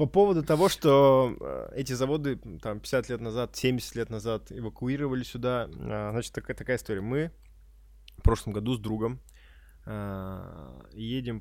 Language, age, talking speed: Russian, 20-39, 125 wpm